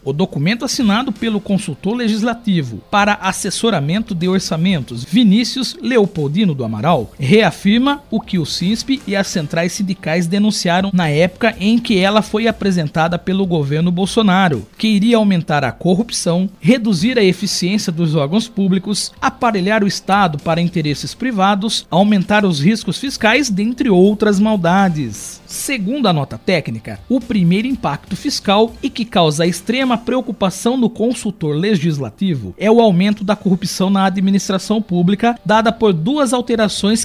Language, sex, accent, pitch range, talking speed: Portuguese, male, Brazilian, 180-225 Hz, 140 wpm